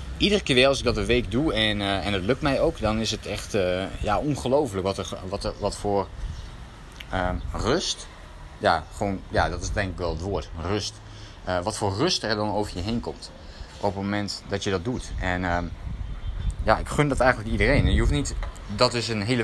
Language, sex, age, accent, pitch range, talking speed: Dutch, male, 20-39, Dutch, 90-130 Hz, 230 wpm